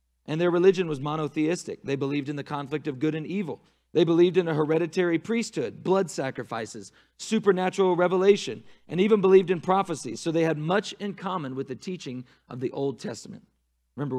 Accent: American